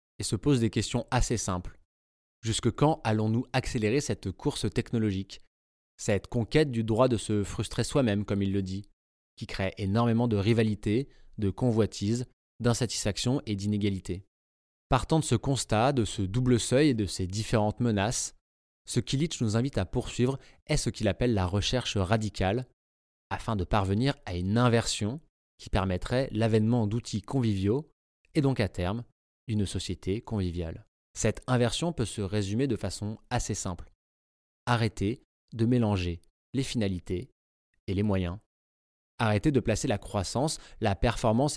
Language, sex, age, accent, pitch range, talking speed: French, male, 20-39, French, 95-125 Hz, 150 wpm